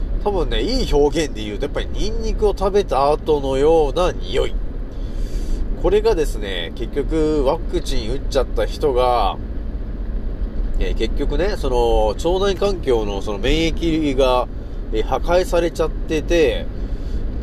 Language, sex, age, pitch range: Japanese, male, 40-59, 110-185 Hz